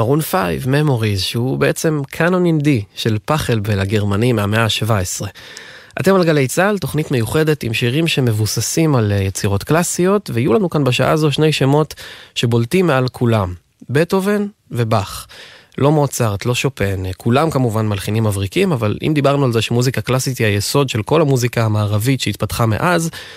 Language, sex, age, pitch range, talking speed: Hebrew, male, 20-39, 105-140 Hz, 155 wpm